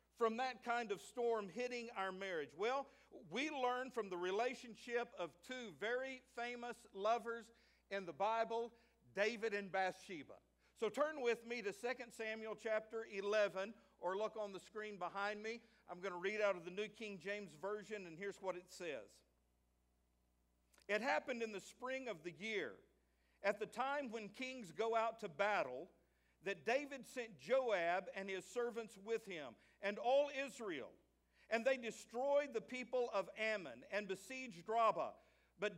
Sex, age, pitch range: male, 50-69, 185-235 Hz